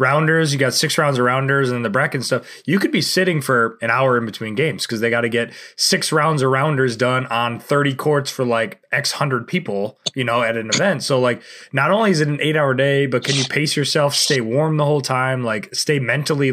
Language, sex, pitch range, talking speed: English, male, 125-160 Hz, 245 wpm